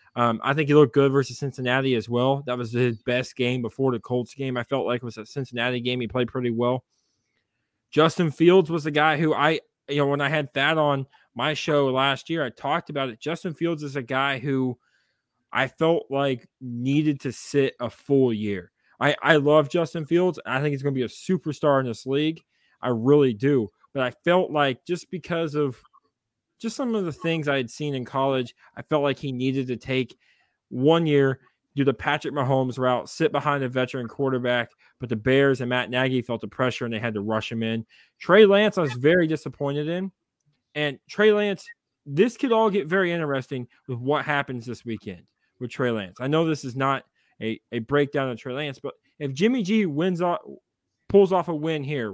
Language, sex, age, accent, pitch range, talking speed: English, male, 20-39, American, 125-155 Hz, 215 wpm